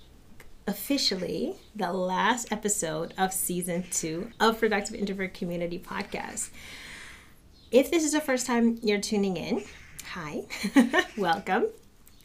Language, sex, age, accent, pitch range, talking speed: English, female, 30-49, American, 175-215 Hz, 115 wpm